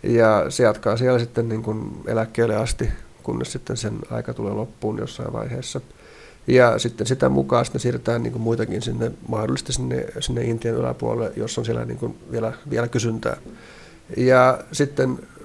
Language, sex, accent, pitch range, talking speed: Finnish, male, native, 115-130 Hz, 165 wpm